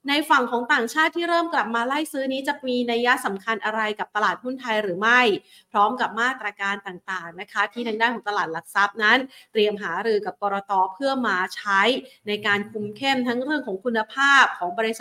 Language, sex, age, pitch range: Thai, female, 30-49, 205-260 Hz